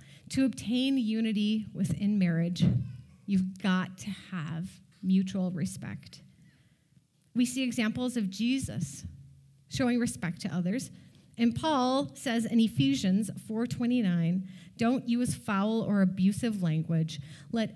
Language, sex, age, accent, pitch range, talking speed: English, female, 30-49, American, 160-225 Hz, 110 wpm